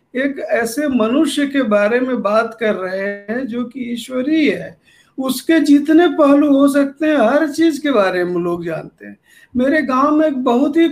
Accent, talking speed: native, 185 wpm